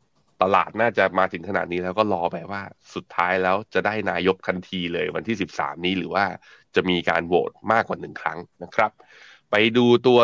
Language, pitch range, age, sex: Thai, 90-110 Hz, 20-39, male